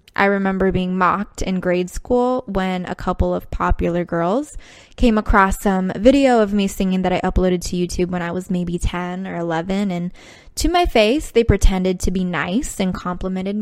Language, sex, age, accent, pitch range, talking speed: English, female, 10-29, American, 180-205 Hz, 190 wpm